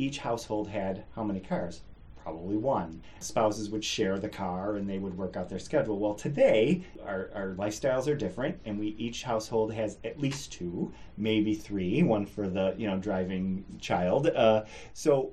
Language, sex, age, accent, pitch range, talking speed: English, male, 30-49, American, 95-115 Hz, 175 wpm